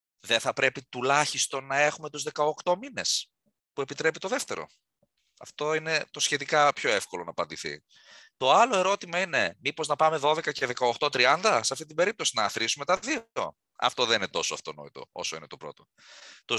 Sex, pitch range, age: male, 125-165 Hz, 30-49